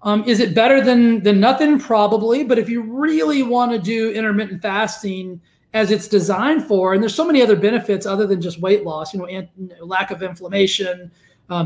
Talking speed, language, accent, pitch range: 210 wpm, English, American, 190-235 Hz